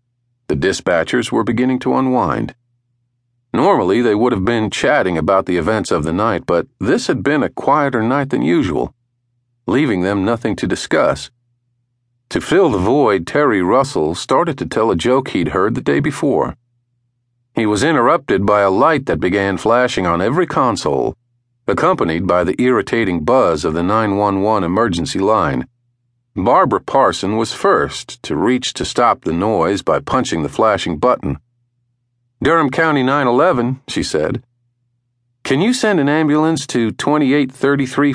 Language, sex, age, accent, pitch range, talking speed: English, male, 50-69, American, 115-125 Hz, 155 wpm